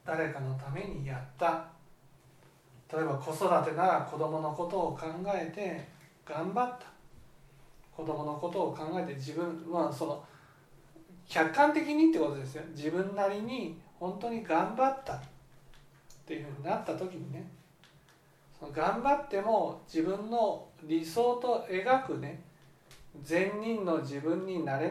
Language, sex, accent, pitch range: Japanese, male, native, 150-190 Hz